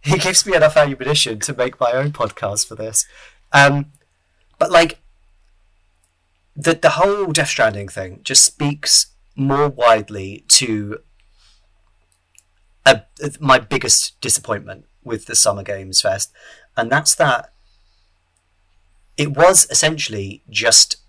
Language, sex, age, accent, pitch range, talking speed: English, male, 30-49, British, 85-130 Hz, 120 wpm